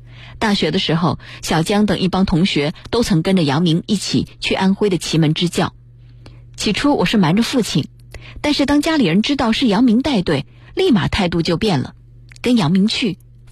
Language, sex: Chinese, female